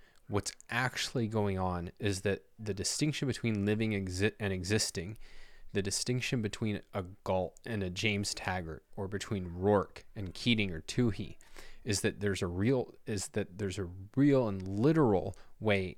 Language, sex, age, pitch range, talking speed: English, male, 30-49, 95-115 Hz, 160 wpm